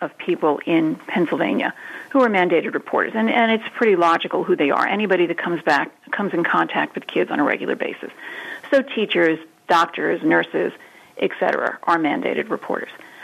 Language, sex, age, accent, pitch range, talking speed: English, female, 40-59, American, 170-235 Hz, 170 wpm